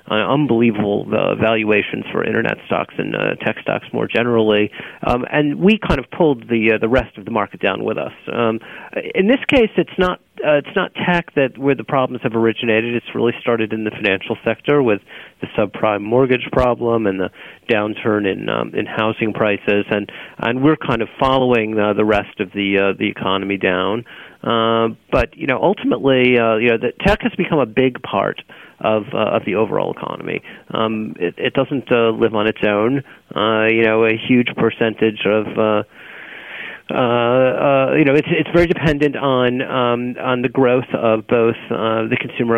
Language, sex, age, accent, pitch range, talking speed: English, male, 40-59, American, 110-135 Hz, 190 wpm